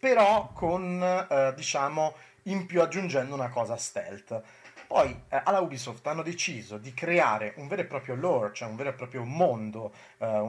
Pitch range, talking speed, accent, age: 115-150 Hz, 170 wpm, native, 30-49